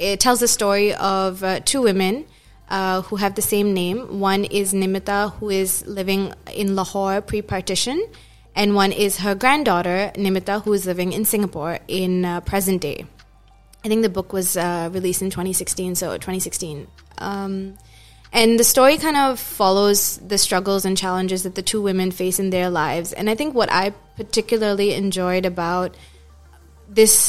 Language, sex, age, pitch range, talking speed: English, female, 20-39, 185-205 Hz, 170 wpm